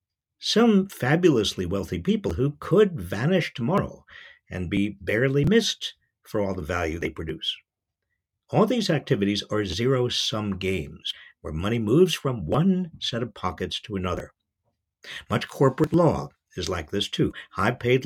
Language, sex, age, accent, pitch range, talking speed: English, male, 60-79, American, 100-150 Hz, 140 wpm